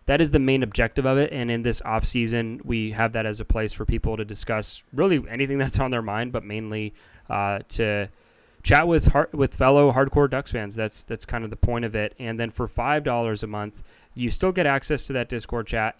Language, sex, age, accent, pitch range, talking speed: English, male, 20-39, American, 115-135 Hz, 235 wpm